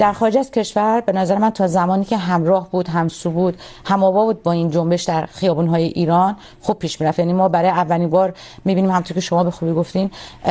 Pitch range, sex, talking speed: 170-195 Hz, female, 210 wpm